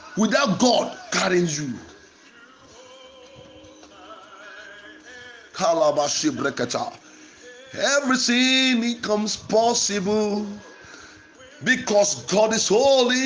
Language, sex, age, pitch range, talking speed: English, male, 50-69, 235-320 Hz, 50 wpm